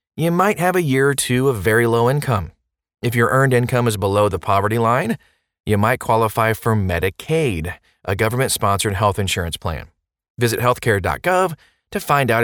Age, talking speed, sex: 30-49, 170 wpm, male